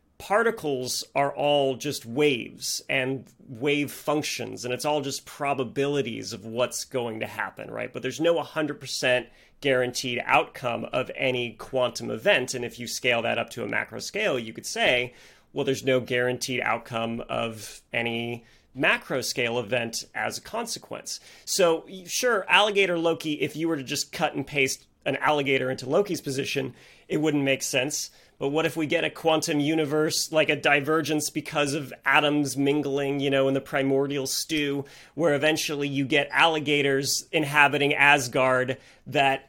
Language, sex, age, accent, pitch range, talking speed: English, male, 30-49, American, 130-150 Hz, 160 wpm